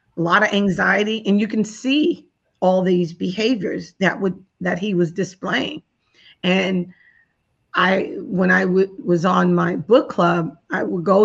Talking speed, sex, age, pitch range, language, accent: 160 wpm, female, 40-59, 175-215 Hz, English, American